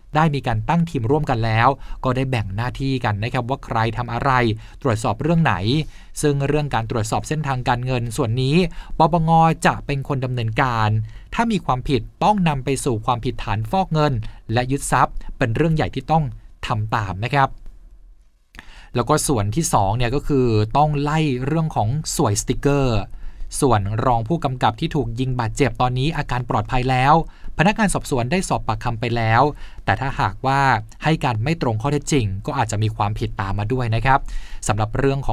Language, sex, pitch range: Thai, male, 115-145 Hz